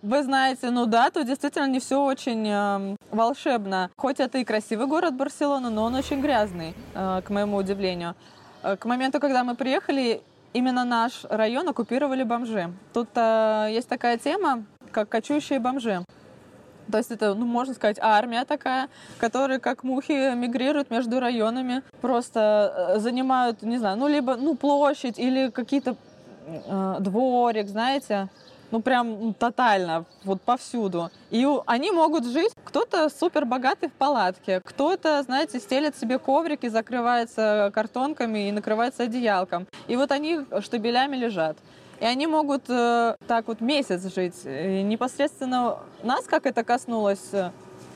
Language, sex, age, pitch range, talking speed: Russian, female, 20-39, 220-275 Hz, 140 wpm